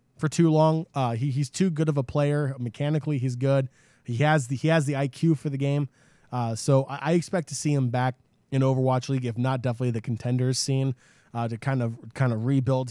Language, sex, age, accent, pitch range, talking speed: English, male, 20-39, American, 120-145 Hz, 230 wpm